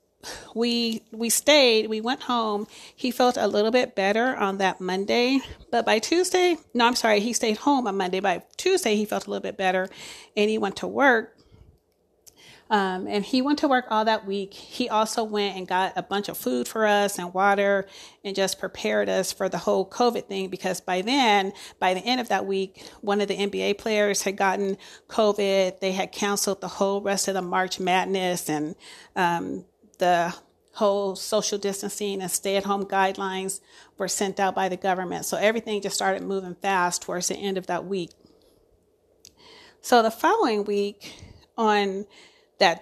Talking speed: 185 wpm